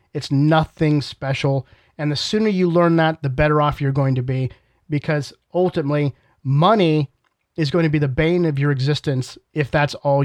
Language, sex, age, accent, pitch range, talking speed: English, male, 30-49, American, 135-165 Hz, 180 wpm